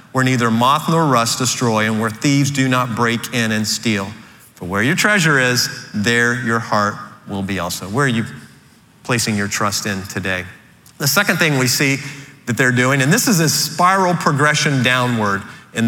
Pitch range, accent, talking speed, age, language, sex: 115-145 Hz, American, 190 wpm, 40-59, English, male